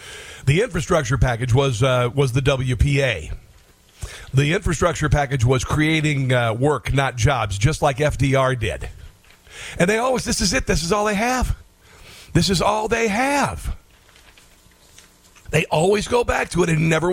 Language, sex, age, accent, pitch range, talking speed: English, male, 50-69, American, 125-175 Hz, 160 wpm